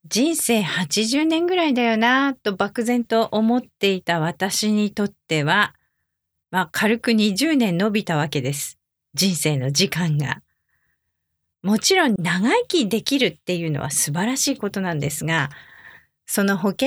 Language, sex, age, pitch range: English, female, 40-59, 160-250 Hz